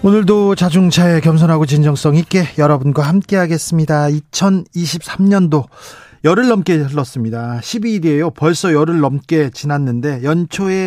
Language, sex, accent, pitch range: Korean, male, native, 140-180 Hz